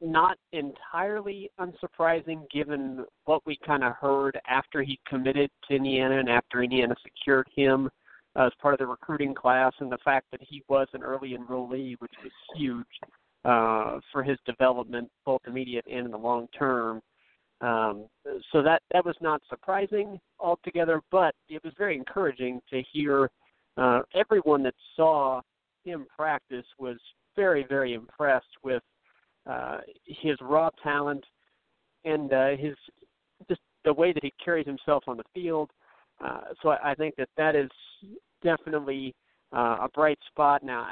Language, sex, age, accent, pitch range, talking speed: English, male, 50-69, American, 130-160 Hz, 155 wpm